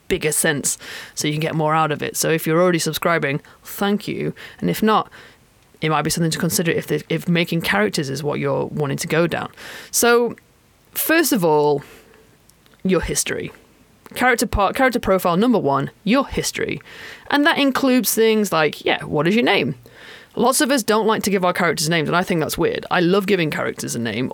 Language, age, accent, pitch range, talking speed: English, 30-49, British, 150-205 Hz, 200 wpm